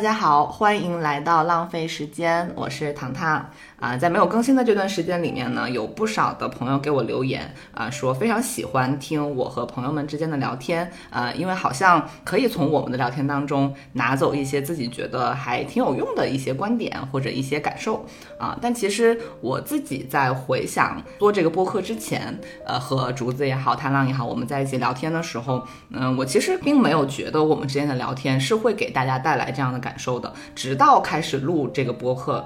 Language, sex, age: Chinese, female, 20-39